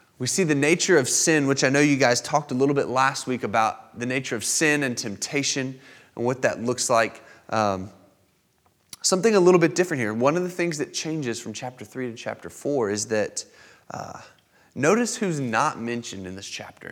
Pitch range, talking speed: 100-140 Hz, 205 wpm